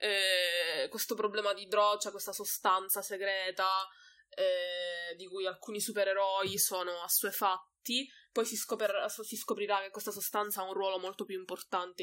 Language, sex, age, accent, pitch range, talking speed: Italian, female, 20-39, native, 190-220 Hz, 160 wpm